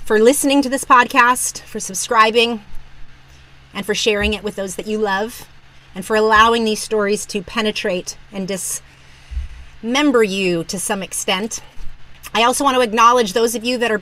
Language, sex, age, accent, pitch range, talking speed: English, female, 30-49, American, 190-230 Hz, 165 wpm